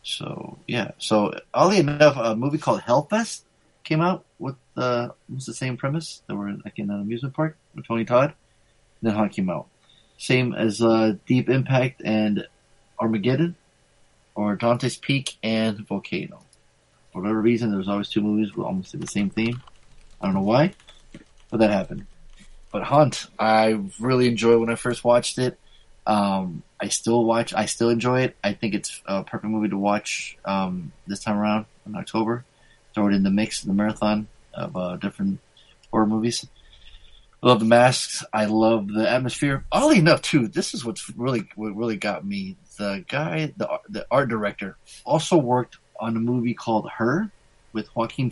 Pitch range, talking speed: 105-125 Hz, 175 wpm